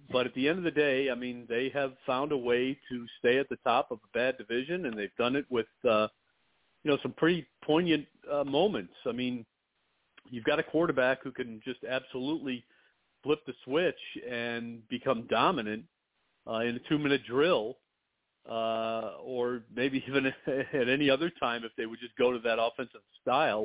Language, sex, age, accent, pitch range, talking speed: English, male, 40-59, American, 120-150 Hz, 190 wpm